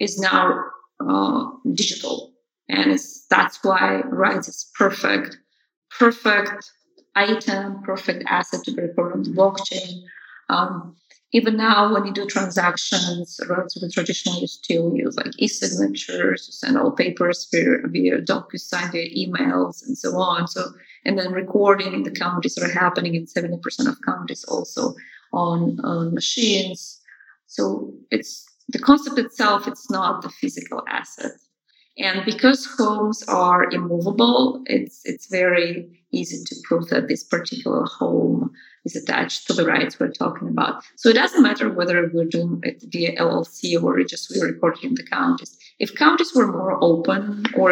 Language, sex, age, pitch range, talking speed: English, female, 20-39, 175-255 Hz, 155 wpm